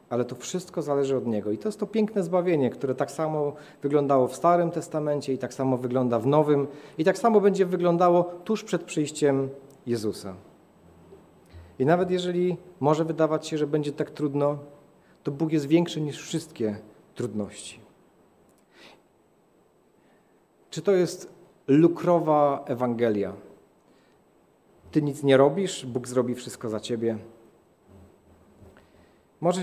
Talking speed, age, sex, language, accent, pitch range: 135 wpm, 40-59, male, Polish, native, 125-160 Hz